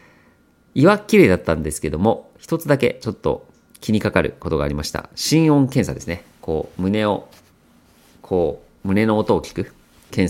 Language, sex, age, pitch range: Japanese, male, 40-59, 85-110 Hz